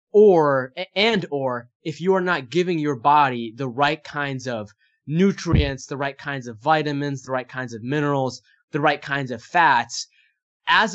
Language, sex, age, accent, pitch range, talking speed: English, male, 20-39, American, 125-160 Hz, 170 wpm